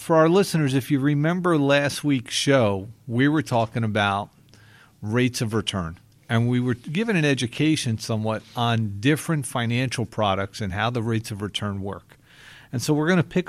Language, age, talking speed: English, 50-69, 180 wpm